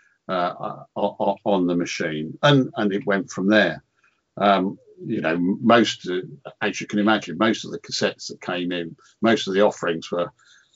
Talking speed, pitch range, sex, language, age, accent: 165 wpm, 95-110 Hz, male, English, 50-69, British